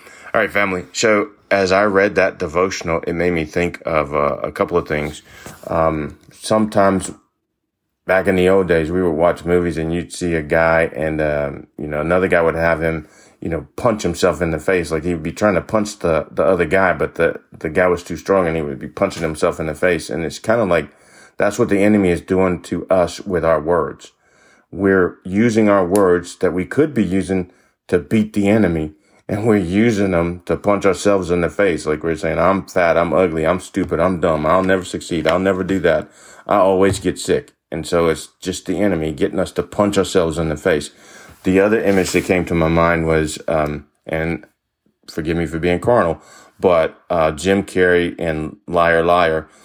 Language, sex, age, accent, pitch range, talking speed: English, male, 30-49, American, 80-95 Hz, 210 wpm